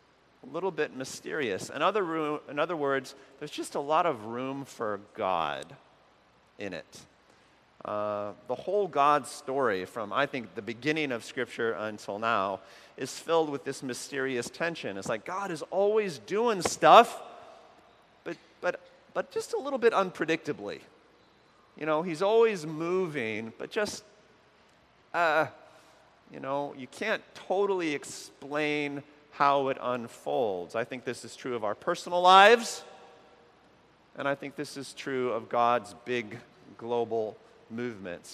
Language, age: English, 40-59